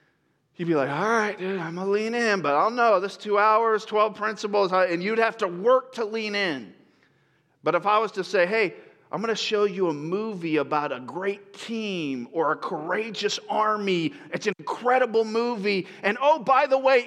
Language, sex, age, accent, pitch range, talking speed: English, male, 40-59, American, 195-245 Hz, 205 wpm